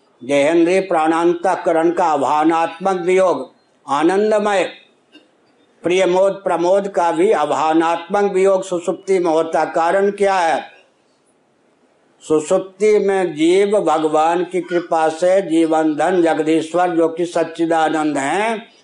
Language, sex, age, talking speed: Hindi, male, 60-79, 85 wpm